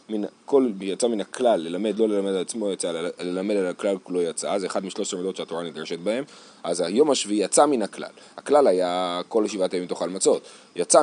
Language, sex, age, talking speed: Hebrew, male, 30-49, 195 wpm